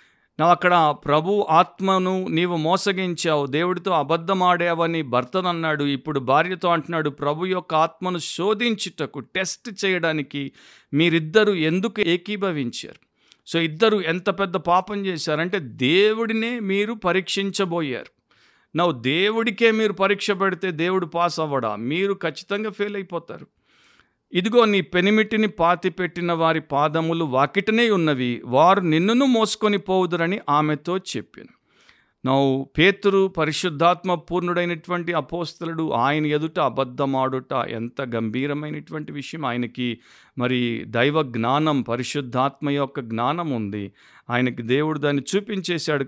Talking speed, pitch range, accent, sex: 105 wpm, 140-190 Hz, native, male